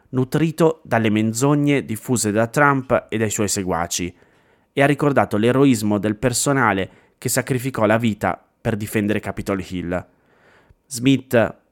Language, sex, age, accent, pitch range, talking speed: Italian, male, 30-49, native, 105-125 Hz, 130 wpm